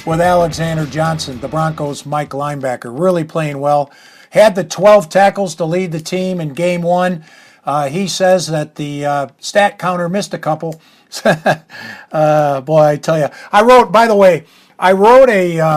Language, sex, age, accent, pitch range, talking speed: English, male, 50-69, American, 145-180 Hz, 175 wpm